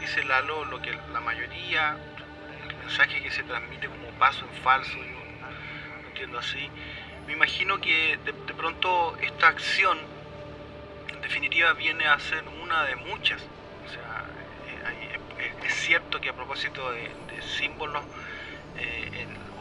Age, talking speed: 30-49, 155 wpm